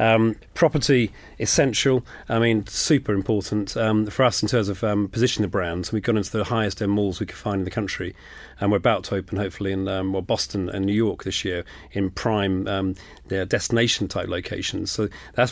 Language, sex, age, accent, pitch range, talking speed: English, male, 40-59, British, 100-115 Hz, 195 wpm